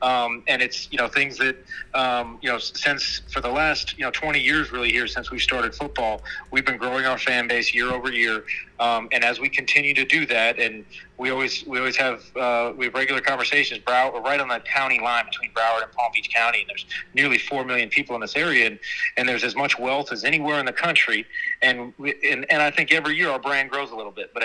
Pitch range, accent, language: 125-140 Hz, American, English